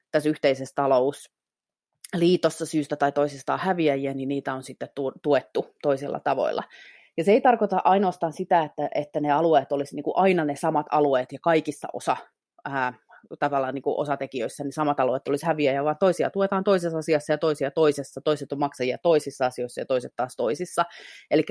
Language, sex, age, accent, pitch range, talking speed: Finnish, female, 30-49, native, 140-170 Hz, 165 wpm